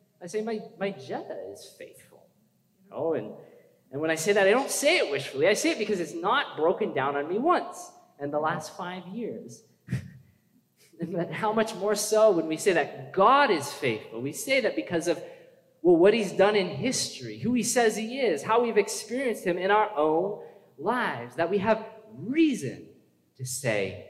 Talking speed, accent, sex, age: 190 wpm, American, male, 30-49